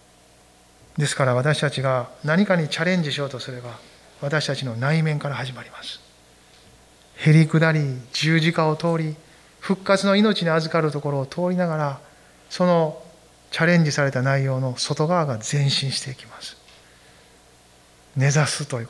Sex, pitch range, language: male, 135-175 Hz, Japanese